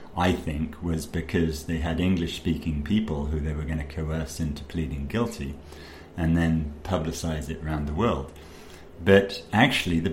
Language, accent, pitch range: English, British, 80-90 Hz